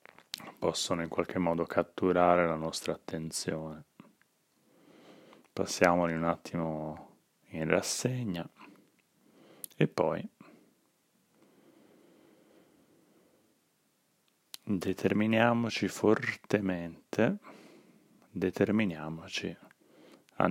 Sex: male